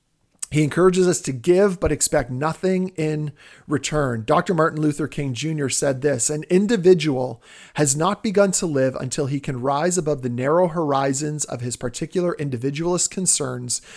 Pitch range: 130-175 Hz